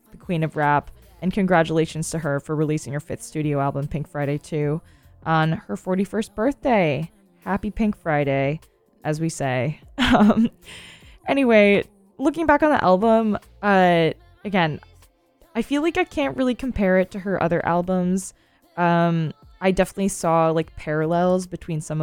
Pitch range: 155-190 Hz